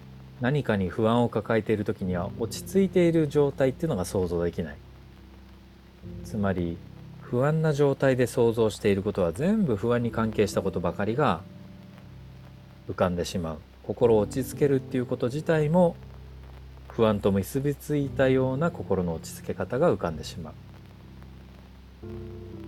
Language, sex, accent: Japanese, male, native